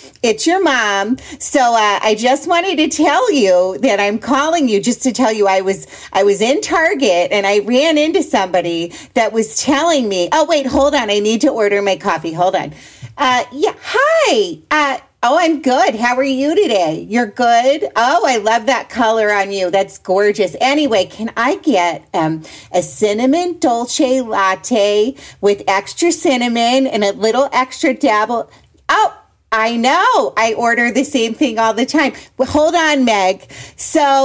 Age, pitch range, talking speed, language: 40-59, 200-270 Hz, 175 wpm, English